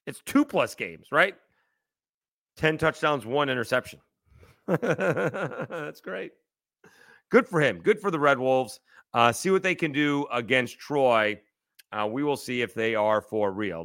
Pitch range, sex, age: 110-165 Hz, male, 40-59